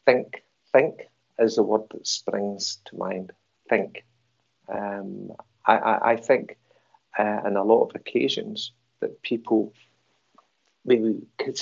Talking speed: 130 wpm